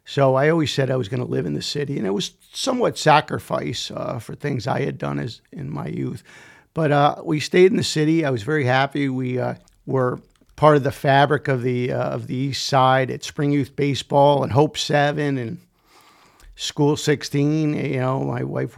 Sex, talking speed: male, 210 wpm